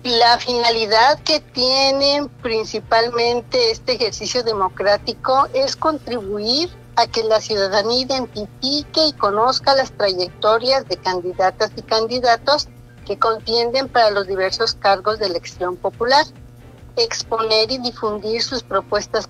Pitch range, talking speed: 195-250 Hz, 115 wpm